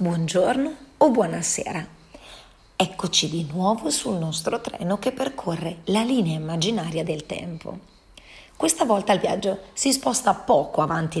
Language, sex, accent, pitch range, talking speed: Italian, female, native, 175-225 Hz, 130 wpm